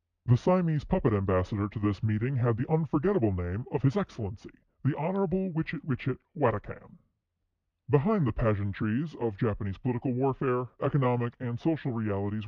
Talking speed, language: 145 wpm, English